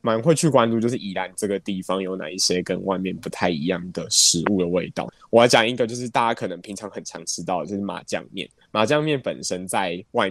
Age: 20-39